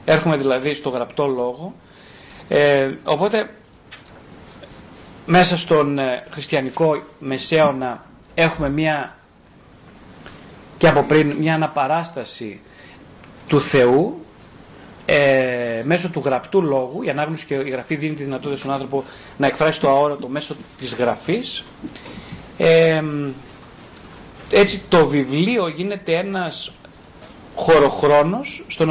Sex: male